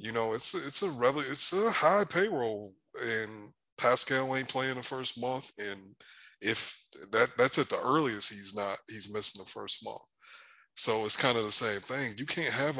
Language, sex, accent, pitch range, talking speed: English, male, American, 105-130 Hz, 190 wpm